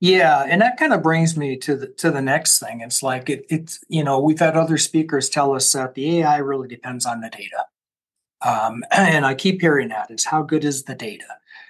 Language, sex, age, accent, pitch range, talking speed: English, male, 40-59, American, 130-160 Hz, 215 wpm